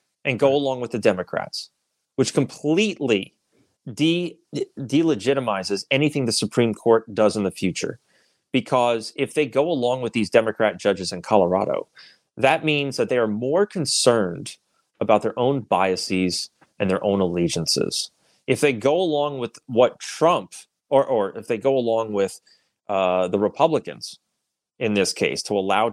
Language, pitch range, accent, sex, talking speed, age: English, 120-170 Hz, American, male, 155 wpm, 30-49